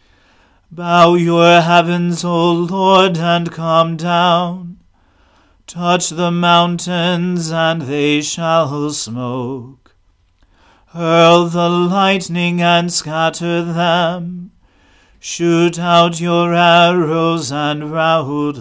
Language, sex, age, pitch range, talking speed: English, male, 40-59, 150-175 Hz, 85 wpm